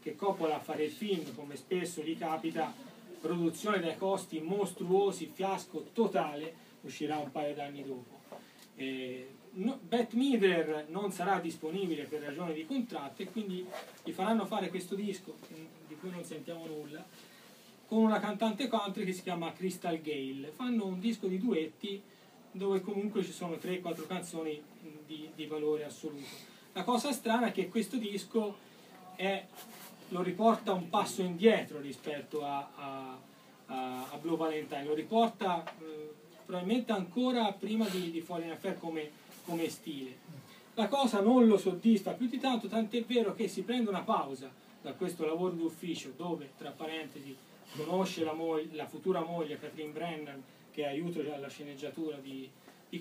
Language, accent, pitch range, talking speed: Italian, native, 155-205 Hz, 155 wpm